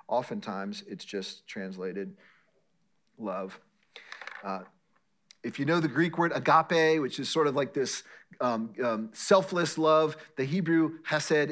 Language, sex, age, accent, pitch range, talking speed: English, male, 40-59, American, 125-190 Hz, 135 wpm